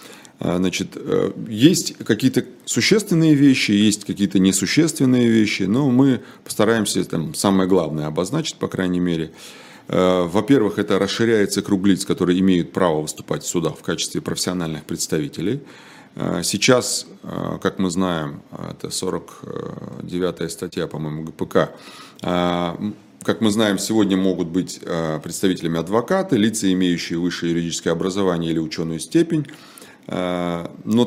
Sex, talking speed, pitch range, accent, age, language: male, 115 wpm, 90-115 Hz, native, 30-49, Russian